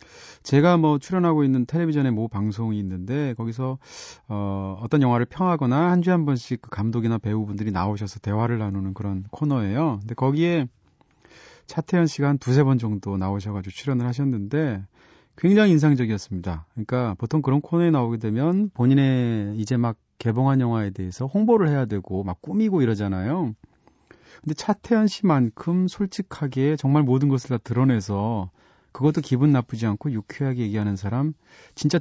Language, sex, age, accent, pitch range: Korean, male, 30-49, native, 105-150 Hz